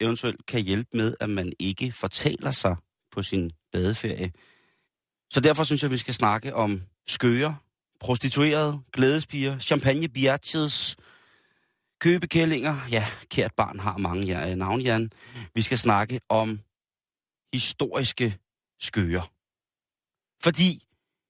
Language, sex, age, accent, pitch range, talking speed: Danish, male, 30-49, native, 100-130 Hz, 105 wpm